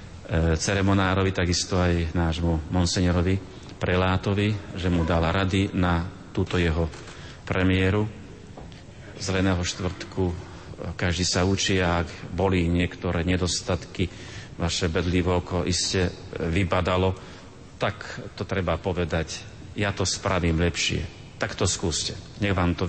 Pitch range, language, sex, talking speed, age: 85-100 Hz, Slovak, male, 115 wpm, 40-59